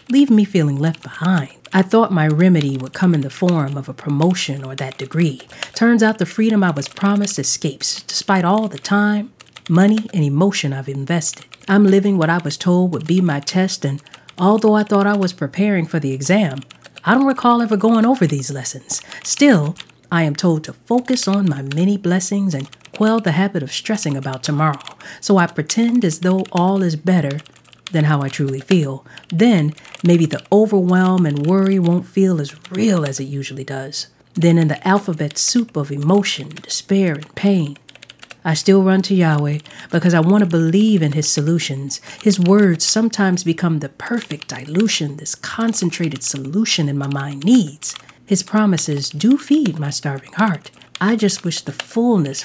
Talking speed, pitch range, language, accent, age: 180 wpm, 145-200 Hz, English, American, 40-59